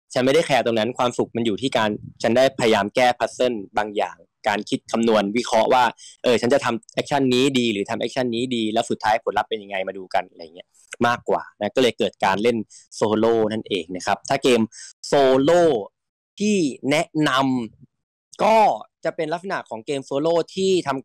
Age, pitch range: 20-39, 115-140 Hz